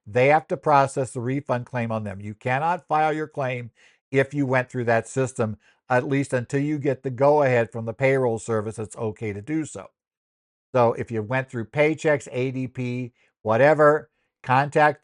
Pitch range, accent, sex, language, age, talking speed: 115-150 Hz, American, male, English, 60-79, 180 wpm